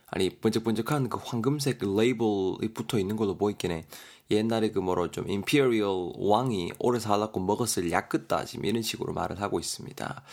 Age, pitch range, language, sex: 20-39, 95-125 Hz, Korean, male